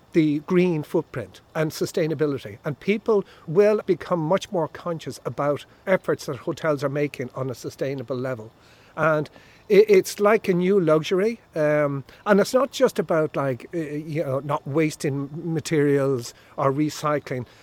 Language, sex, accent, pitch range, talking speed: English, male, Irish, 145-185 Hz, 145 wpm